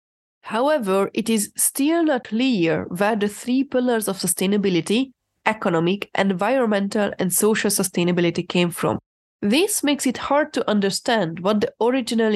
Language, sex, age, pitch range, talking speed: English, female, 20-39, 185-245 Hz, 135 wpm